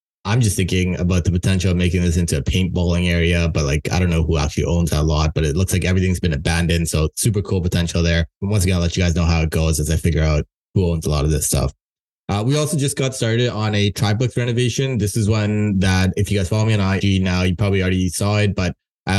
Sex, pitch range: male, 90-110 Hz